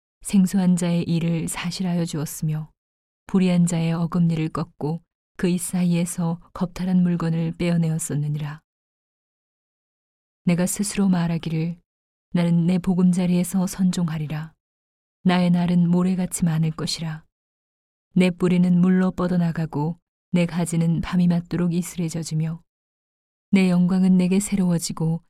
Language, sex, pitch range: Korean, female, 160-180 Hz